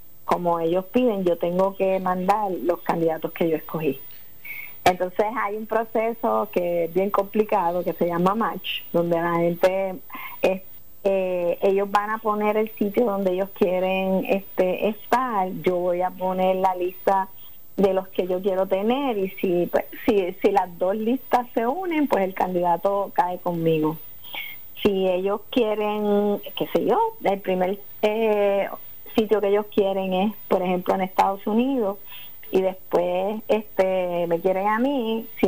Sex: female